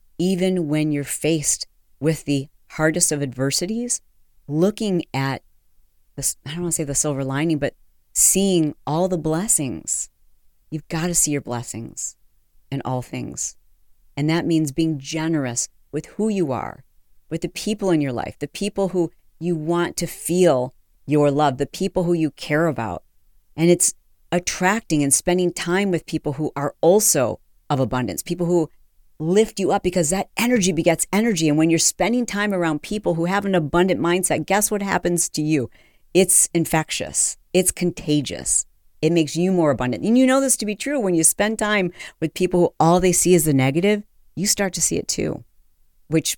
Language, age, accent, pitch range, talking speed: English, 40-59, American, 140-180 Hz, 180 wpm